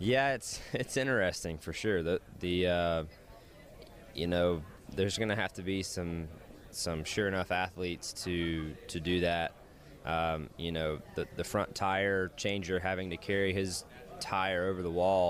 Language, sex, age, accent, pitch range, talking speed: English, male, 20-39, American, 85-95 Hz, 160 wpm